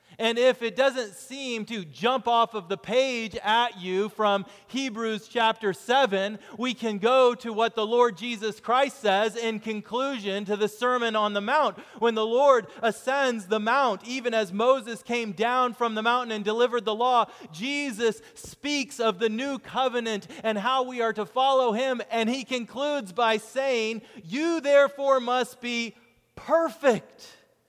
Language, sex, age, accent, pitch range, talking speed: English, male, 30-49, American, 180-240 Hz, 165 wpm